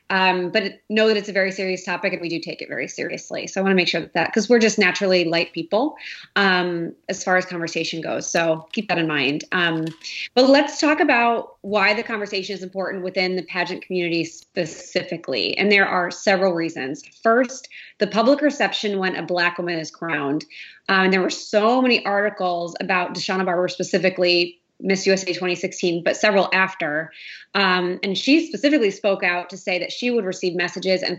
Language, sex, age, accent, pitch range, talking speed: English, female, 30-49, American, 175-210 Hz, 200 wpm